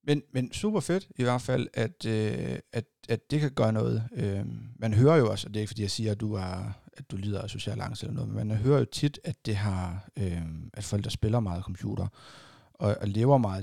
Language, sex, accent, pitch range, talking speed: Danish, male, native, 100-125 Hz, 245 wpm